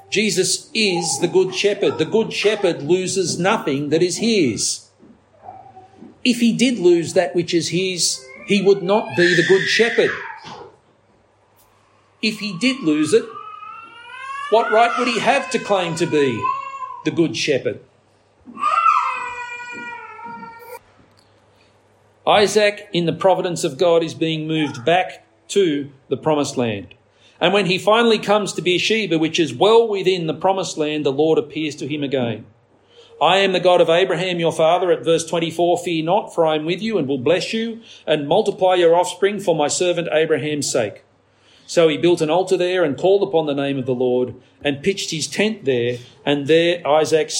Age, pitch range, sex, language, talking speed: 50-69, 150-215 Hz, male, English, 165 wpm